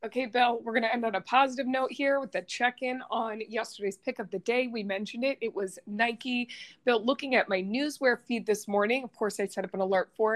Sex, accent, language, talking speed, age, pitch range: female, American, English, 245 wpm, 20-39, 195-250 Hz